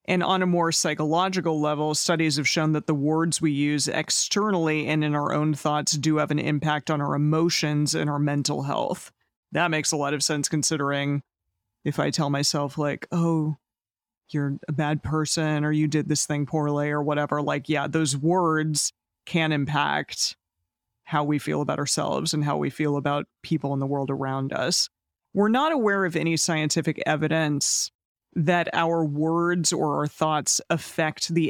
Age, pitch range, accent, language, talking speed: 30-49, 145-165 Hz, American, English, 175 wpm